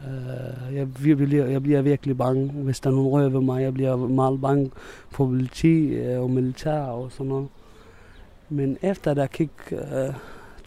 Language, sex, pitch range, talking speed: Danish, male, 120-140 Hz, 180 wpm